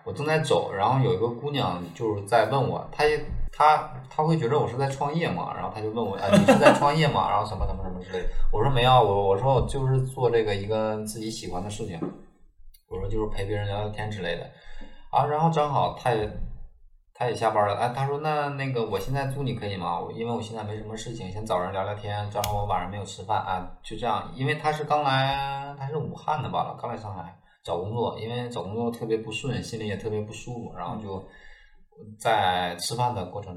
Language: Chinese